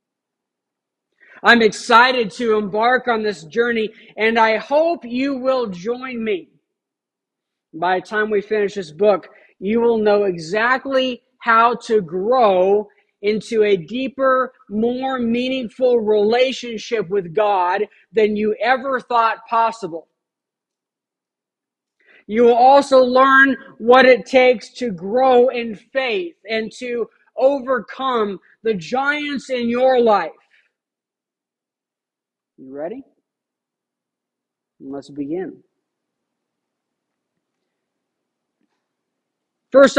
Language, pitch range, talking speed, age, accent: English, 205-250 Hz, 100 wpm, 50-69, American